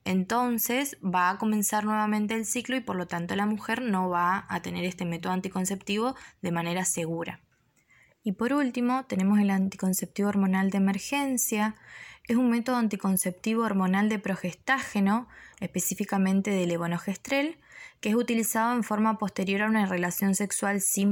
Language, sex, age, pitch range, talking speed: Spanish, female, 20-39, 190-225 Hz, 150 wpm